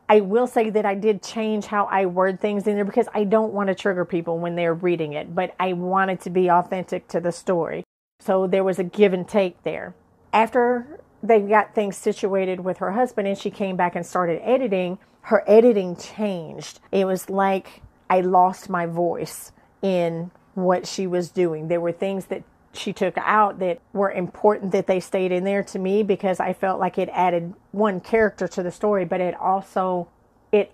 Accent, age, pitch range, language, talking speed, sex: American, 40-59, 180-205 Hz, English, 200 wpm, female